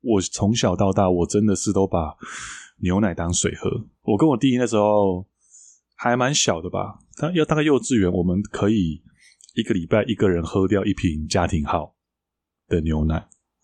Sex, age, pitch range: male, 20-39, 90-115 Hz